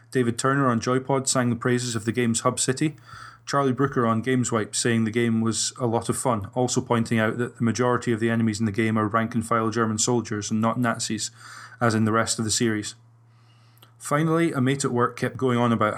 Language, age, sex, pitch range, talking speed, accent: English, 20-39, male, 115-125 Hz, 220 wpm, British